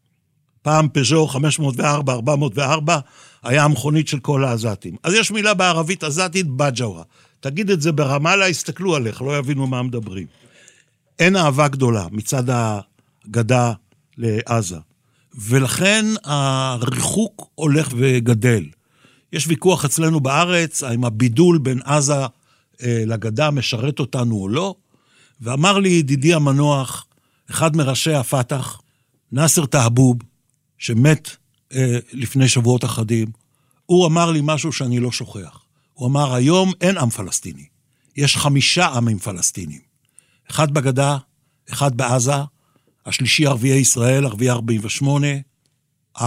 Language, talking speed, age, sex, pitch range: Hebrew, 110 wpm, 60-79, male, 120-155 Hz